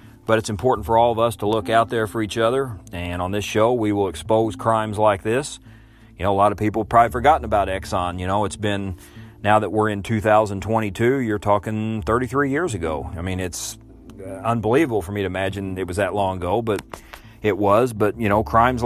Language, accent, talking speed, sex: English, American, 220 wpm, male